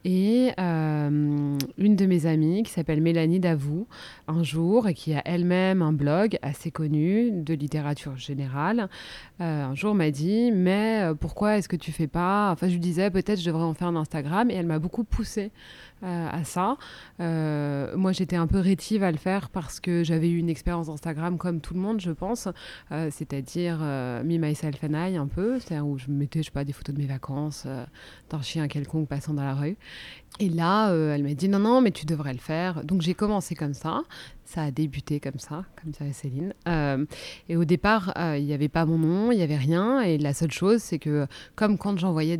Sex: female